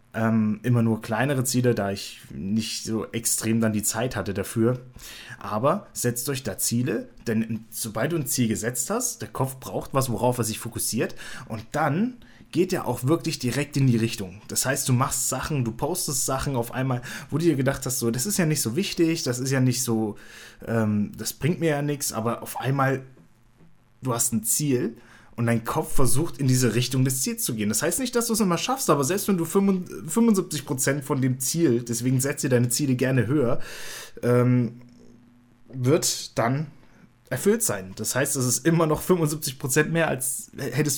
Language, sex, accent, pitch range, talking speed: German, male, German, 115-145 Hz, 195 wpm